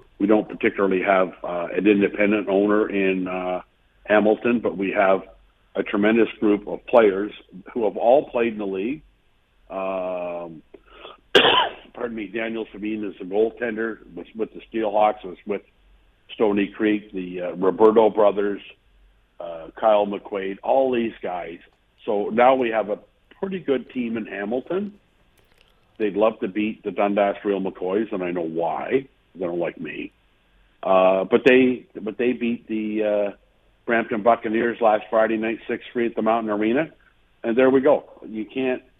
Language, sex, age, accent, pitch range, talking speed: English, male, 60-79, American, 100-120 Hz, 155 wpm